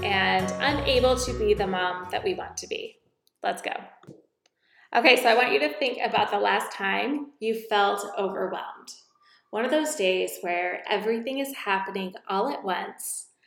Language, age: English, 20-39